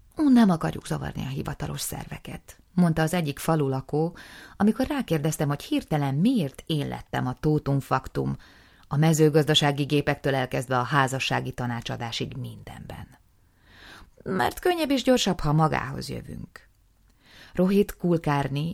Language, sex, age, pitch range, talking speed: Hungarian, female, 30-49, 130-175 Hz, 125 wpm